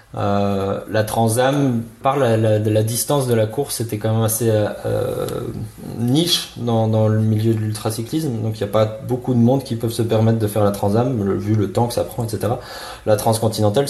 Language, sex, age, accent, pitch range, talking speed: French, male, 20-39, French, 105-130 Hz, 205 wpm